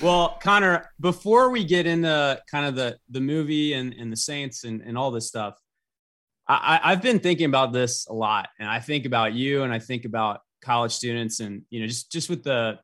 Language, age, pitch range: English, 20-39, 110-150 Hz